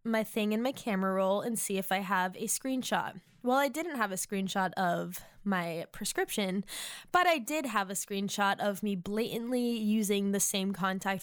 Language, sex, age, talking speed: English, female, 10-29, 185 wpm